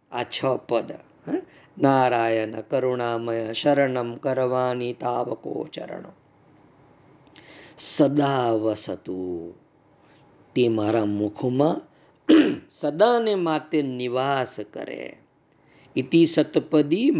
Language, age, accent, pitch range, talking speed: Gujarati, 50-69, native, 125-170 Hz, 55 wpm